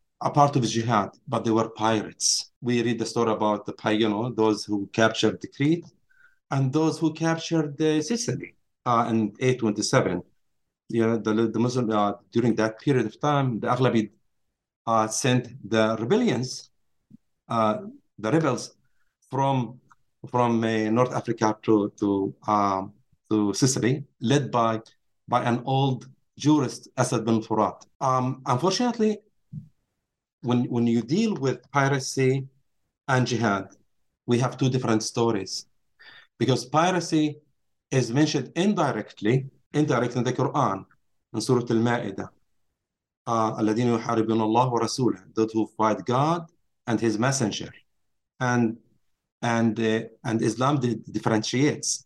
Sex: male